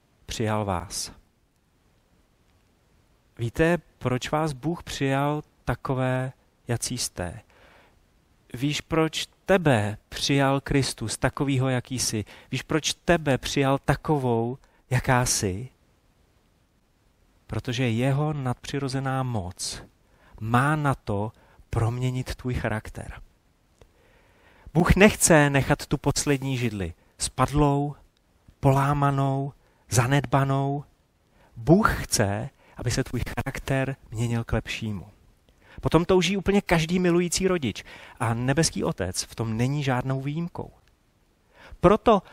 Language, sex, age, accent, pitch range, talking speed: Czech, male, 40-59, native, 115-160 Hz, 95 wpm